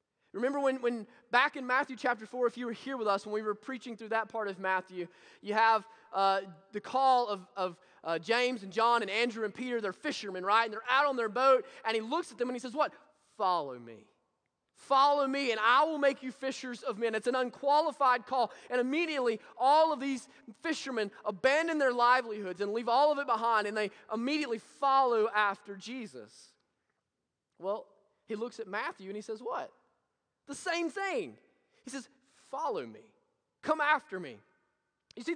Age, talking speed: 20-39, 195 wpm